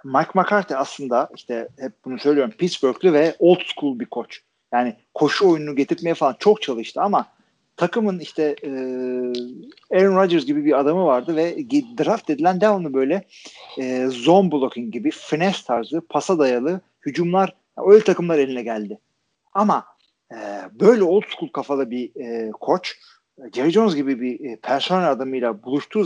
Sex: male